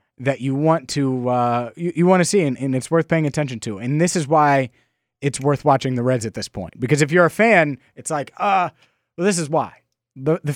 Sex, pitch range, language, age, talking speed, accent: male, 120-165 Hz, English, 30-49, 245 wpm, American